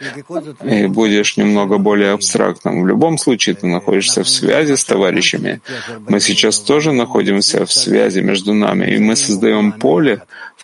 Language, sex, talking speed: Russian, male, 150 wpm